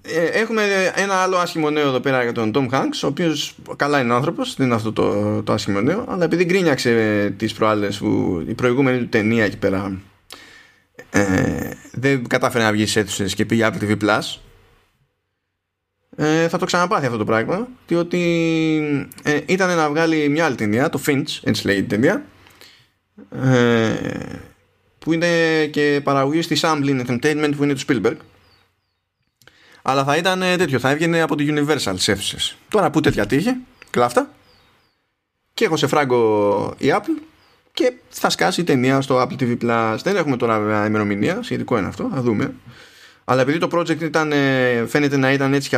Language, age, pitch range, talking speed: Greek, 20-39, 110-160 Hz, 170 wpm